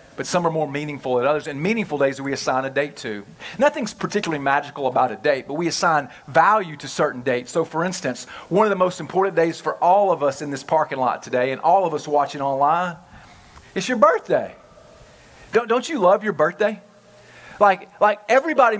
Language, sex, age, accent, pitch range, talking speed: English, male, 40-59, American, 145-190 Hz, 205 wpm